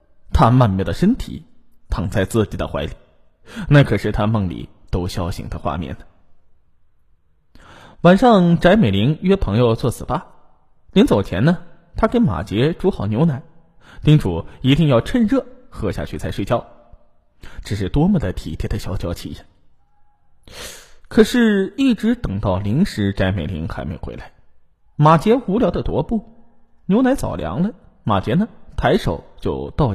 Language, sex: Chinese, male